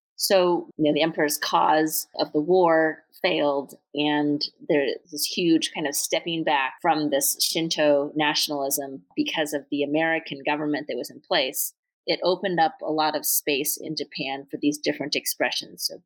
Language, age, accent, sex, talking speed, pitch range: English, 30-49, American, female, 160 wpm, 145-175 Hz